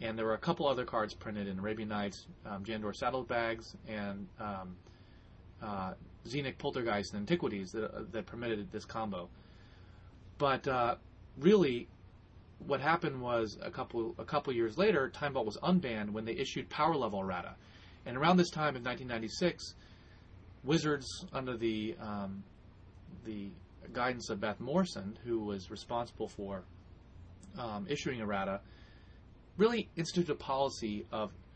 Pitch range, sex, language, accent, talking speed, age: 95-125 Hz, male, English, American, 145 wpm, 30-49